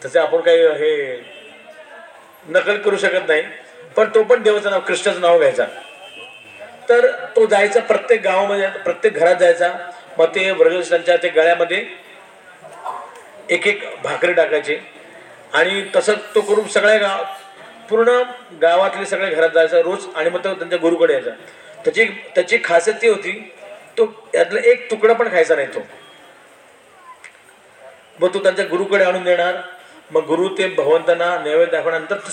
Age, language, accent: 40-59, Marathi, native